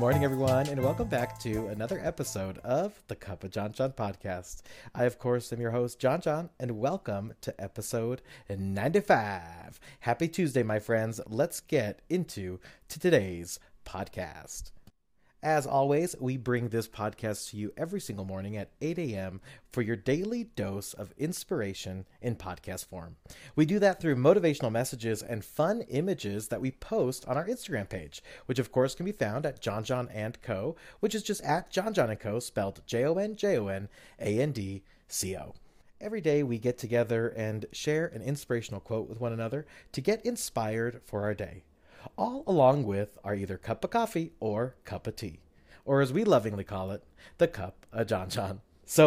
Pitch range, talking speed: 100-150 Hz, 180 wpm